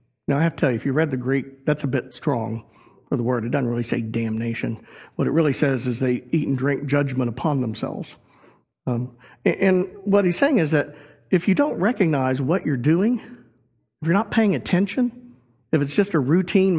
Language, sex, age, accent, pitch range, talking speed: English, male, 50-69, American, 130-185 Hz, 210 wpm